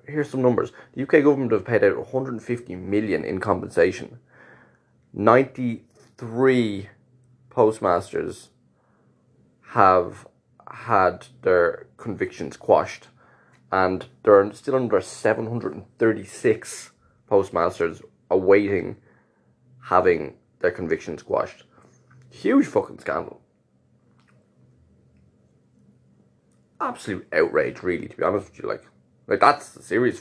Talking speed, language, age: 90 wpm, English, 20-39